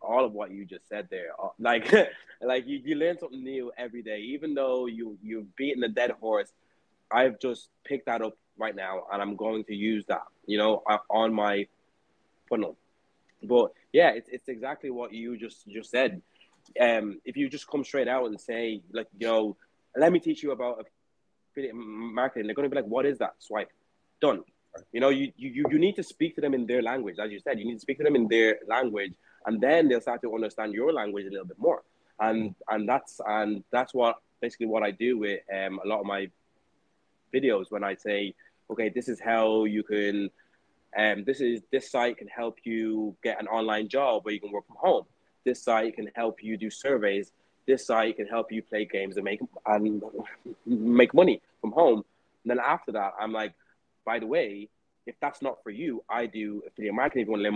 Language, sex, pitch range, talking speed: English, male, 105-125 Hz, 215 wpm